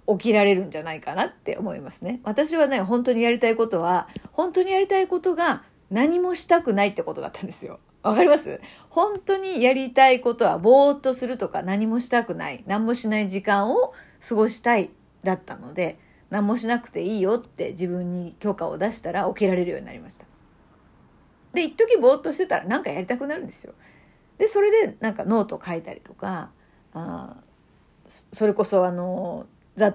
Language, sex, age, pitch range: Japanese, female, 40-59, 190-280 Hz